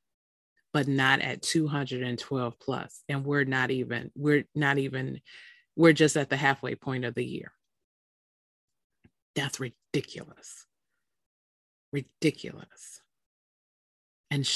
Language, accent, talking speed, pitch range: English, American, 105 wpm, 130-165 Hz